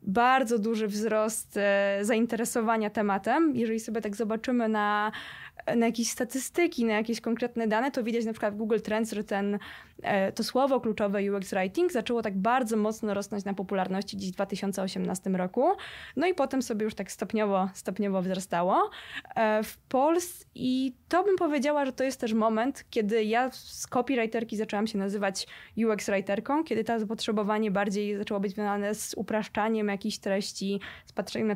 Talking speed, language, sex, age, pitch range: 160 wpm, Polish, female, 20-39, 205-245 Hz